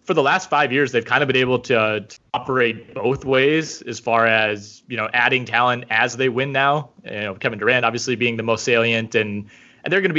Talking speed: 235 wpm